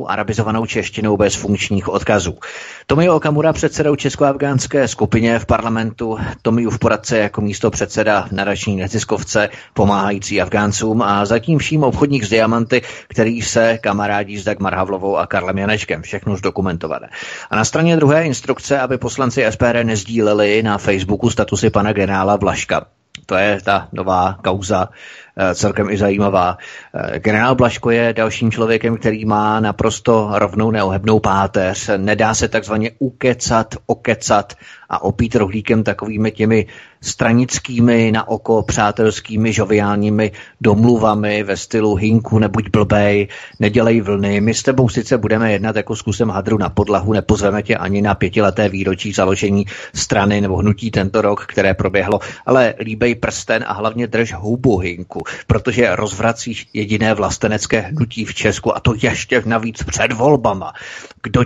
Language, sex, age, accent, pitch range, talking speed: Czech, male, 30-49, native, 105-115 Hz, 140 wpm